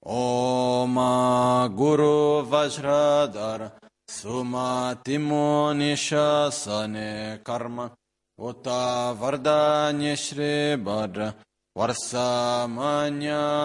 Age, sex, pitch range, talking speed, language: 40-59, male, 110-145 Hz, 50 wpm, Italian